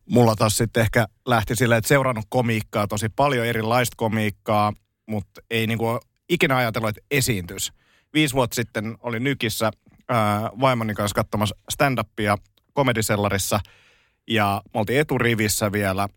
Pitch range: 100-120 Hz